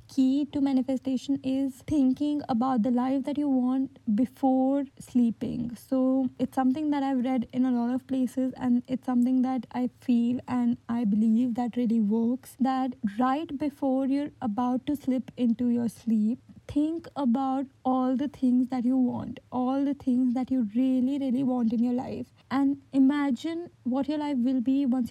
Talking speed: 175 wpm